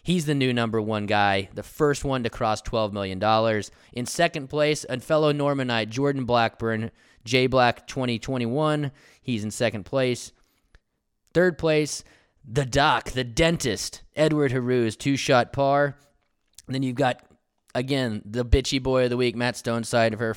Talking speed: 160 wpm